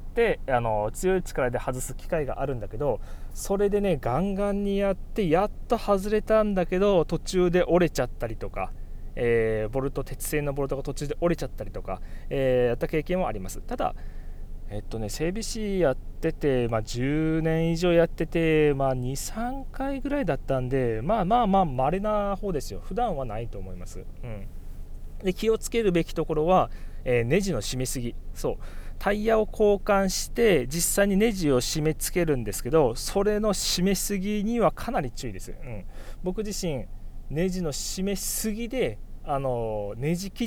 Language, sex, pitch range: Japanese, male, 125-195 Hz